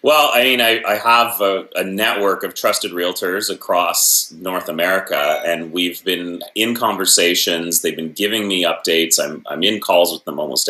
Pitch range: 85-110 Hz